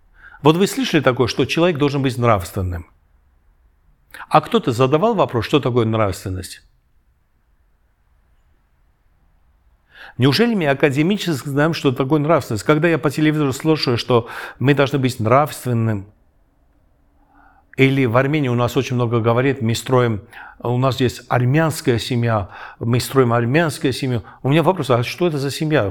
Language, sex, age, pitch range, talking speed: Russian, male, 60-79, 105-150 Hz, 140 wpm